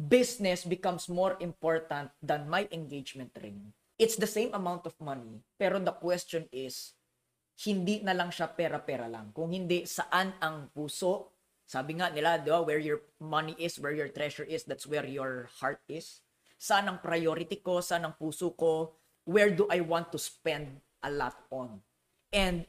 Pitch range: 155-205 Hz